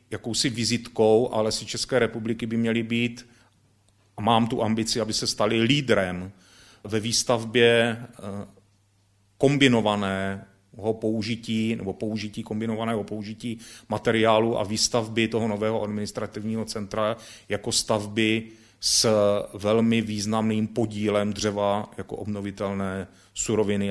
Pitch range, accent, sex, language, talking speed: 100-115 Hz, native, male, Czech, 105 wpm